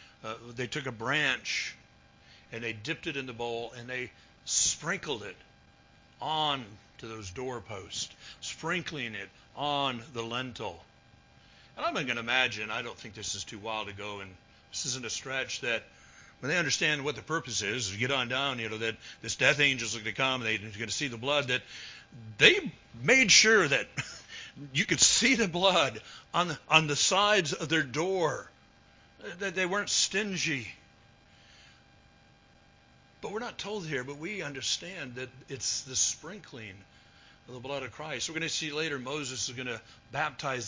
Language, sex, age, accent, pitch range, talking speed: English, male, 60-79, American, 115-155 Hz, 180 wpm